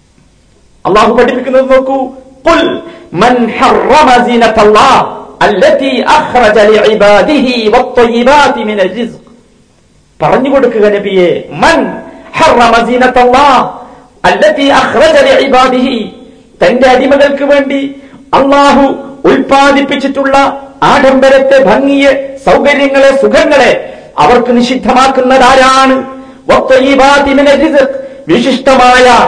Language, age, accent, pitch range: Malayalam, 50-69, native, 255-280 Hz